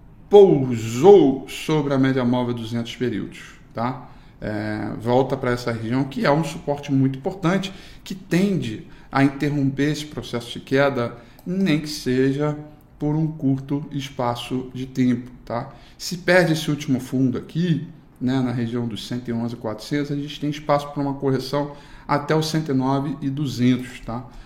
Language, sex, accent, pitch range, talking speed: Portuguese, male, Brazilian, 125-145 Hz, 140 wpm